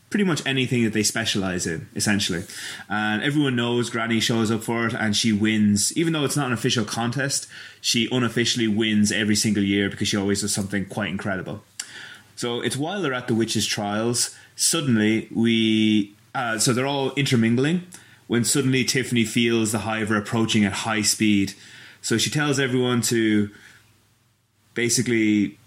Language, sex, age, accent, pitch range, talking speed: English, male, 20-39, British, 105-125 Hz, 165 wpm